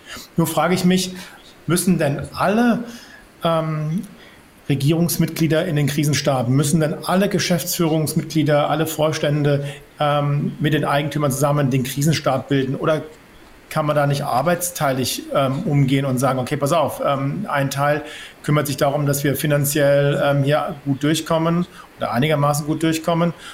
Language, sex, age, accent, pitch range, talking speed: German, male, 50-69, German, 145-175 Hz, 145 wpm